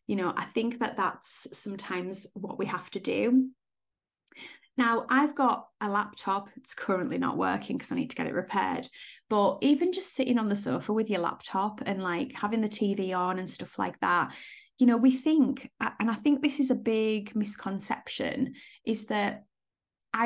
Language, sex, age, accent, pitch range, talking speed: English, female, 20-39, British, 195-250 Hz, 185 wpm